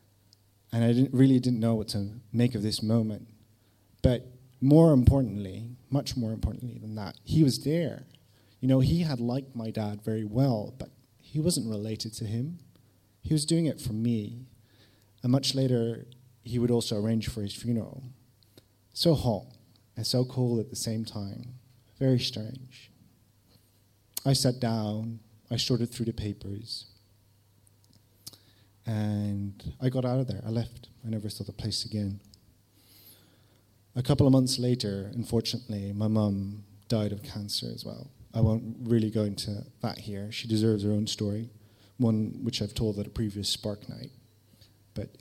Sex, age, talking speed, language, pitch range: male, 30-49, 160 wpm, English, 105-125 Hz